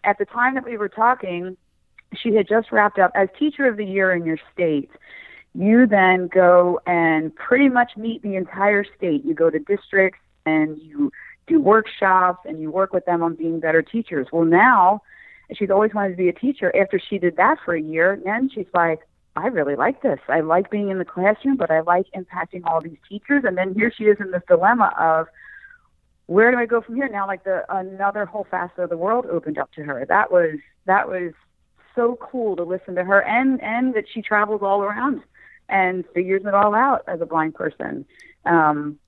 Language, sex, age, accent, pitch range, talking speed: English, female, 40-59, American, 165-215 Hz, 210 wpm